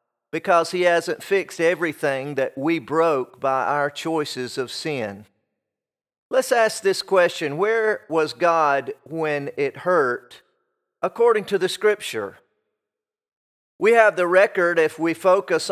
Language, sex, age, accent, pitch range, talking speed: English, male, 40-59, American, 160-210 Hz, 130 wpm